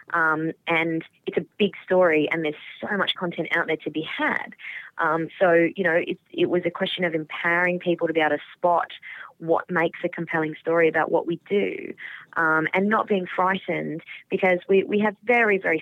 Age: 20-39